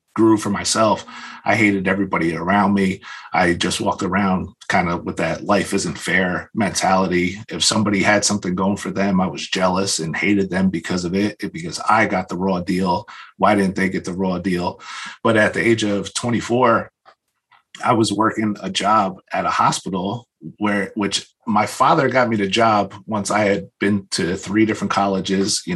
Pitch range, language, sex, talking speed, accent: 95-105 Hz, English, male, 190 wpm, American